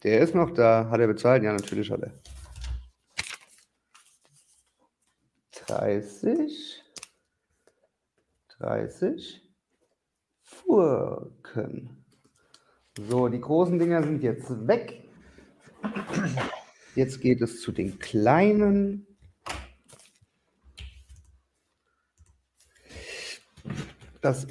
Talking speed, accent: 70 wpm, German